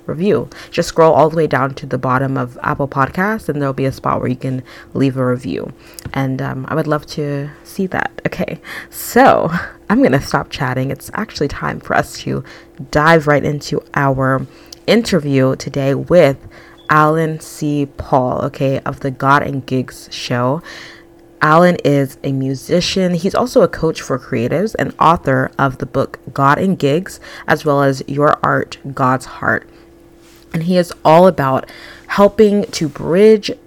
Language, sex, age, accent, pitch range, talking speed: English, female, 20-39, American, 135-170 Hz, 170 wpm